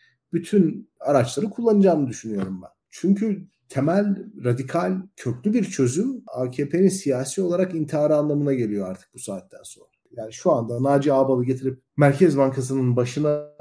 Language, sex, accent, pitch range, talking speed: Turkish, male, native, 120-160 Hz, 130 wpm